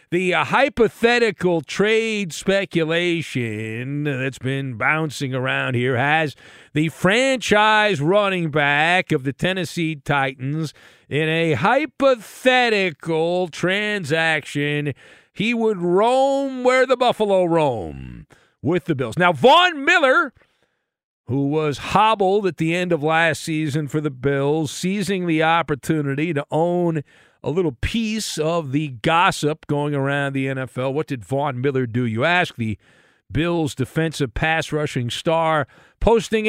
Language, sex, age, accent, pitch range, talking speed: English, male, 50-69, American, 150-230 Hz, 125 wpm